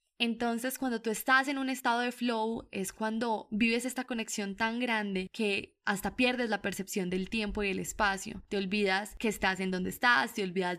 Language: Spanish